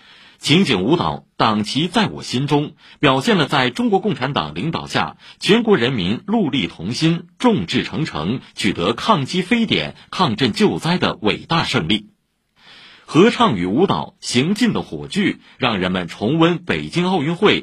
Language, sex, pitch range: Chinese, male, 135-205 Hz